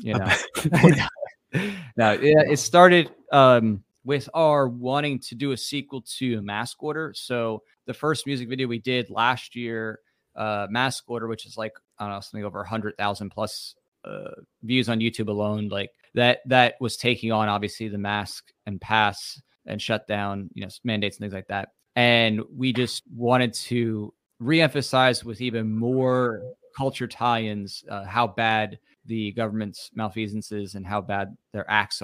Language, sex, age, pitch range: English, male, 20-39, 105-125 Hz